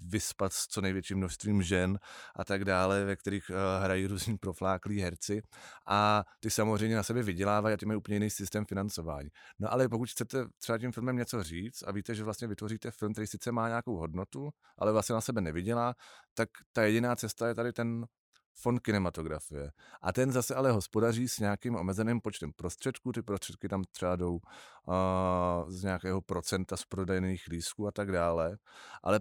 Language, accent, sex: Czech, native, male